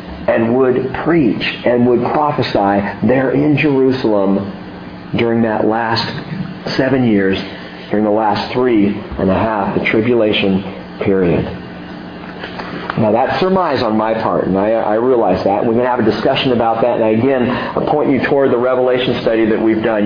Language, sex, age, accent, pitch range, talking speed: English, male, 40-59, American, 105-165 Hz, 165 wpm